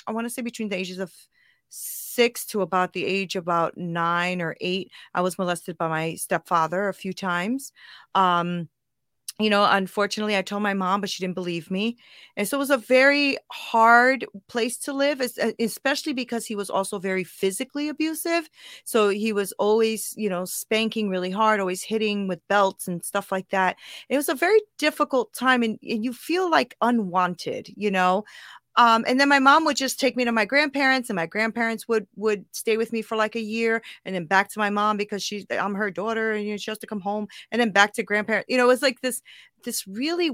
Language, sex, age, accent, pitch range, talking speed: English, female, 30-49, American, 190-255 Hz, 215 wpm